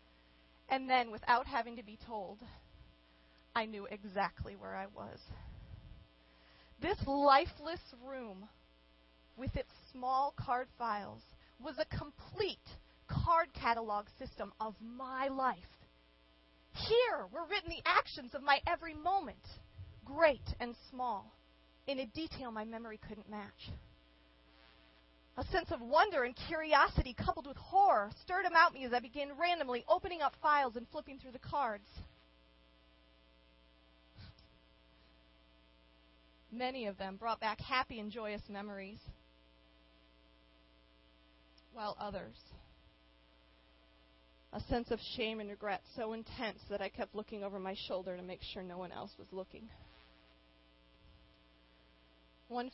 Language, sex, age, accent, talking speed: English, female, 30-49, American, 125 wpm